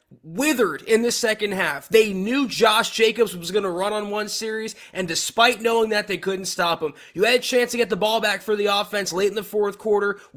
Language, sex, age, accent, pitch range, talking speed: English, male, 20-39, American, 180-225 Hz, 235 wpm